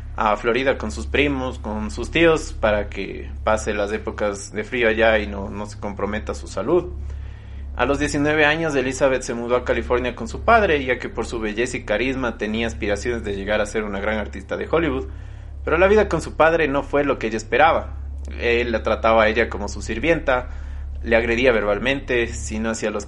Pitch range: 85-120 Hz